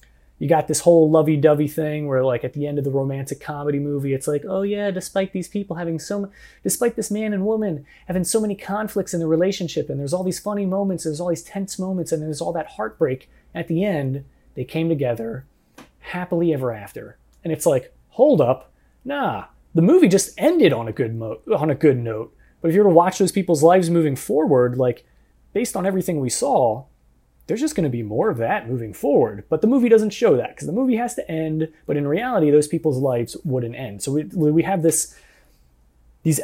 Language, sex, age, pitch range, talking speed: English, male, 30-49, 130-185 Hz, 220 wpm